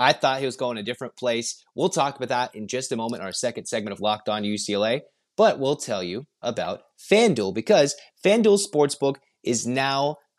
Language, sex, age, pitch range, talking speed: English, male, 30-49, 120-150 Hz, 195 wpm